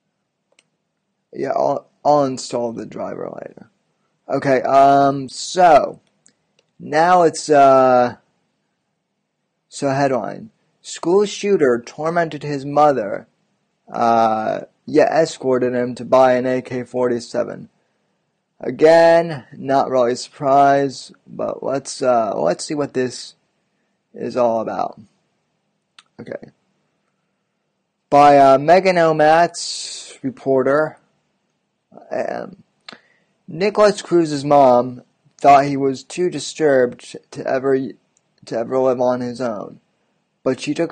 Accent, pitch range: American, 125-155 Hz